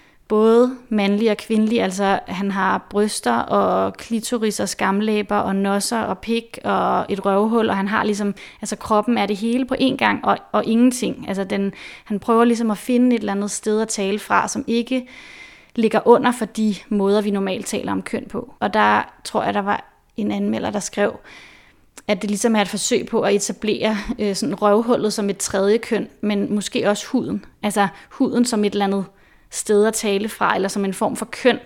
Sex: female